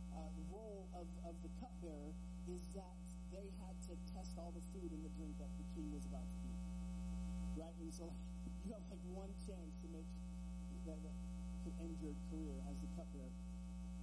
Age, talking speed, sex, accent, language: 40-59, 185 wpm, male, American, English